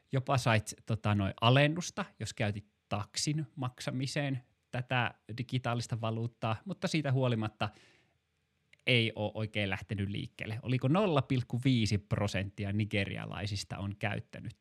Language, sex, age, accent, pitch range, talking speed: Finnish, male, 20-39, native, 105-135 Hz, 100 wpm